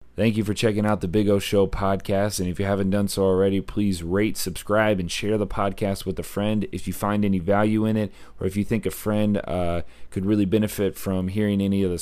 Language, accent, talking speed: English, American, 245 wpm